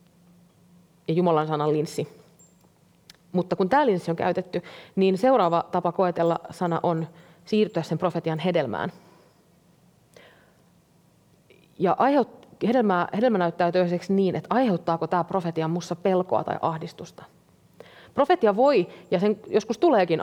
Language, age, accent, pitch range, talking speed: Finnish, 30-49, native, 165-200 Hz, 120 wpm